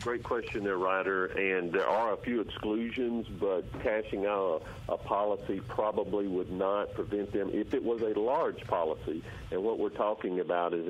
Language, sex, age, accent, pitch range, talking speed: English, male, 50-69, American, 95-120 Hz, 180 wpm